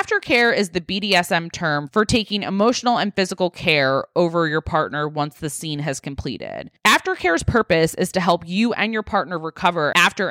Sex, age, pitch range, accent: female, 20-39, 155-215 Hz, American